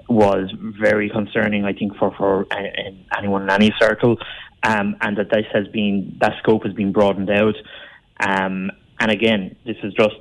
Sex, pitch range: male, 105-120 Hz